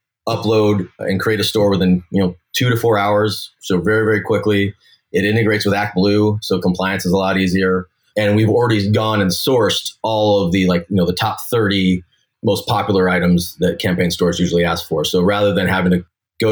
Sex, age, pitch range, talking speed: male, 30-49, 90-105 Hz, 205 wpm